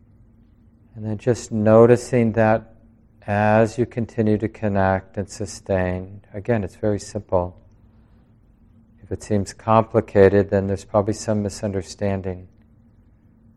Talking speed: 110 wpm